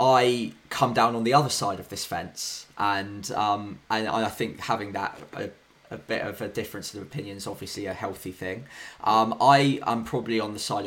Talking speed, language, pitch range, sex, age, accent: 205 wpm, English, 105-130 Hz, male, 20-39, British